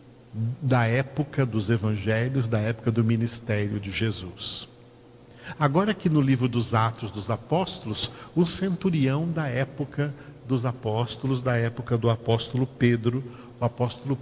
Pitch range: 120-155 Hz